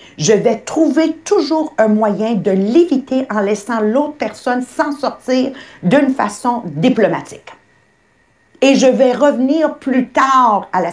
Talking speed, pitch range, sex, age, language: 135 wpm, 185-270 Hz, female, 60-79, English